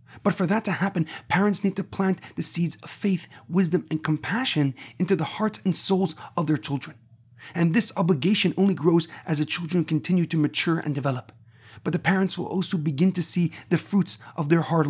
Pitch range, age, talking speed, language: 155-190 Hz, 30-49, 200 wpm, English